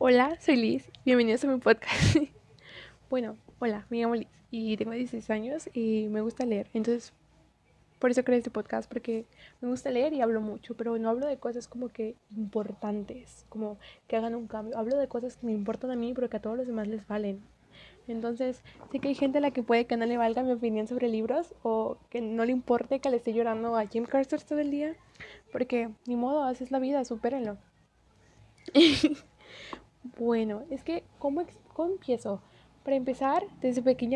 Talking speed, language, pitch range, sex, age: 195 wpm, Spanish, 220-260 Hz, female, 20-39